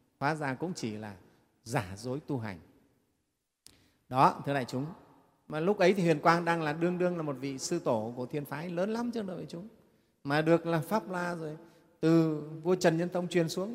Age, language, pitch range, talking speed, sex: 30-49, Vietnamese, 130-170 Hz, 215 wpm, male